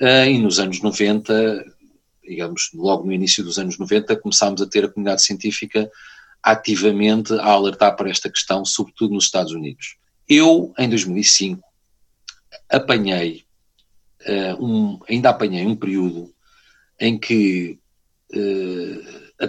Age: 40-59